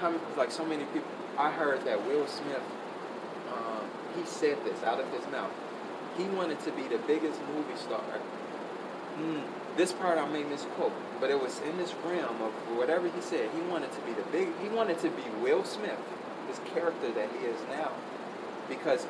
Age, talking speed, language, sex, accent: 30-49, 190 wpm, English, male, American